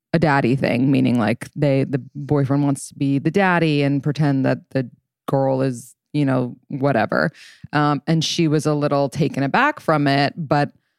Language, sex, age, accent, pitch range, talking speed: English, female, 20-39, American, 135-160 Hz, 180 wpm